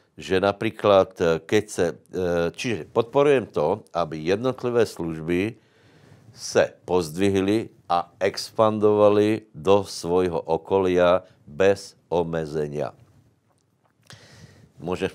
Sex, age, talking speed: male, 60-79, 80 wpm